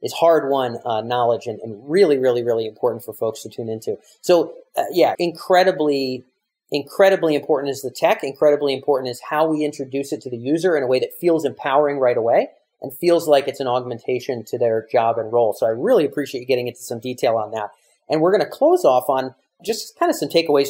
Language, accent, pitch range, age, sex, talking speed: English, American, 125-170 Hz, 40-59, male, 215 wpm